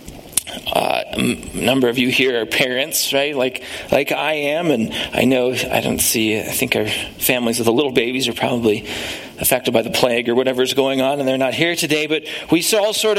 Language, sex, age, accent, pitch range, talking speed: English, male, 40-59, American, 130-190 Hz, 220 wpm